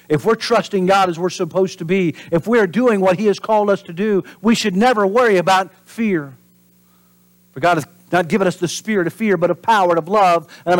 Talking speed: 230 wpm